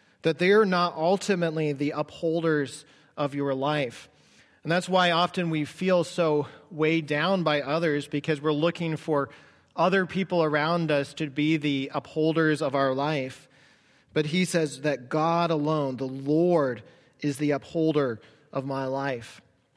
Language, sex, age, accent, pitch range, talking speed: English, male, 40-59, American, 140-160 Hz, 150 wpm